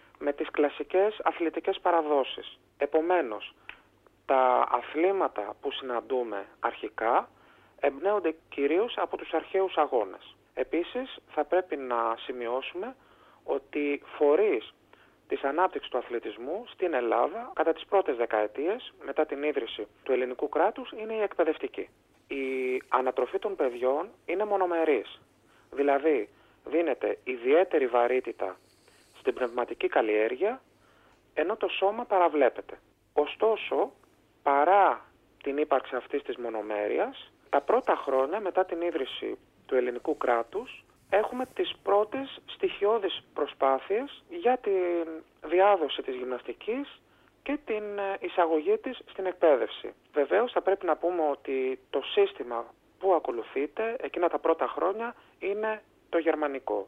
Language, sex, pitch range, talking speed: Greek, male, 135-210 Hz, 115 wpm